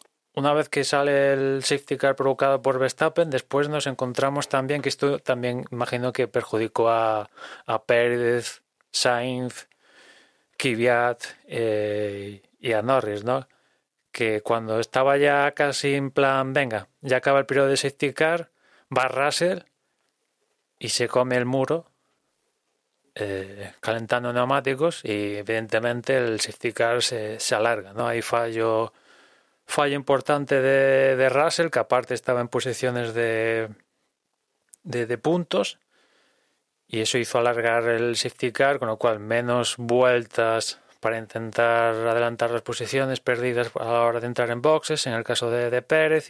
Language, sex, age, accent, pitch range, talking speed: Spanish, male, 20-39, Spanish, 115-135 Hz, 145 wpm